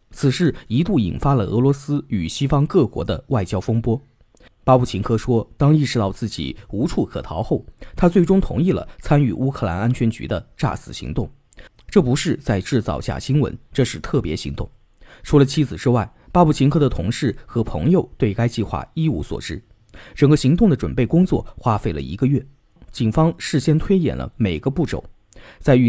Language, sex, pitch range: Chinese, male, 110-145 Hz